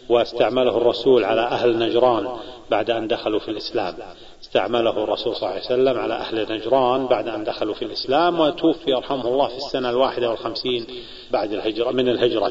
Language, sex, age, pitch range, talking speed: Arabic, male, 40-59, 120-160 Hz, 170 wpm